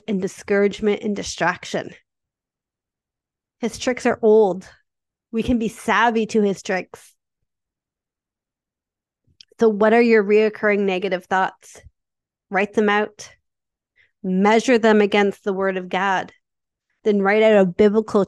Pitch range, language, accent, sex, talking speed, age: 205-250 Hz, English, American, female, 120 wpm, 30-49